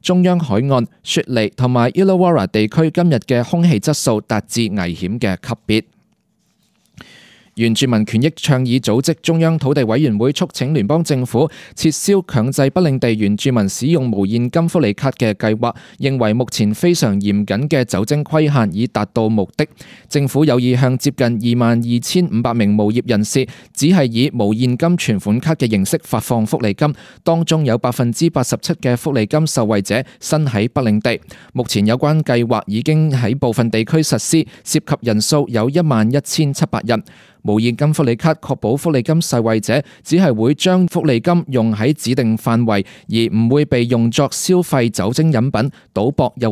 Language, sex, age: Chinese, male, 20-39